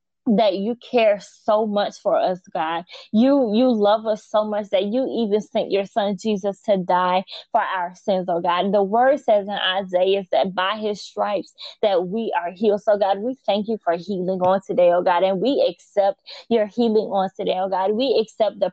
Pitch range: 185-225 Hz